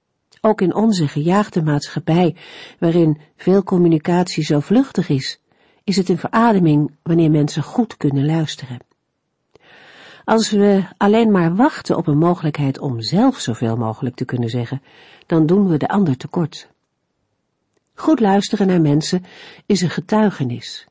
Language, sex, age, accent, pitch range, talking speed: Dutch, female, 50-69, Dutch, 140-195 Hz, 140 wpm